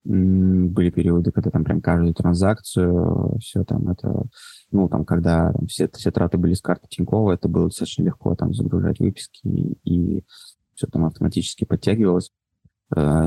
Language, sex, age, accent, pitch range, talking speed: Russian, male, 20-39, native, 85-95 Hz, 150 wpm